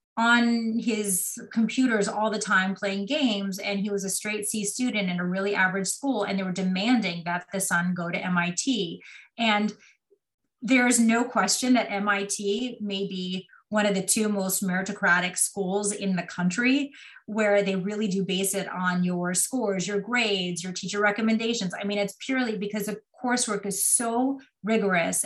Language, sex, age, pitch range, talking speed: English, female, 30-49, 190-230 Hz, 170 wpm